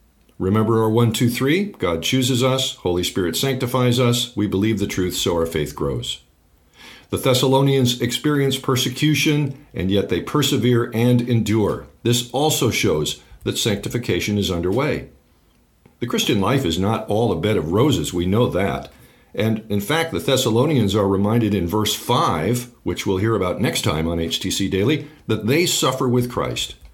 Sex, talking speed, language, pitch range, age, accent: male, 160 wpm, English, 100-135 Hz, 50-69, American